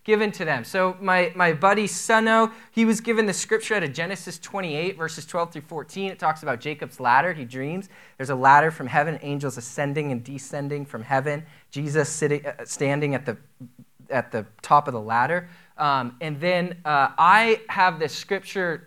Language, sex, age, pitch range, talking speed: English, male, 20-39, 145-195 Hz, 190 wpm